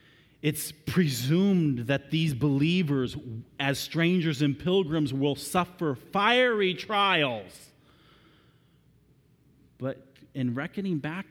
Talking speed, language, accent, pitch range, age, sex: 90 wpm, English, American, 140-200 Hz, 40-59, male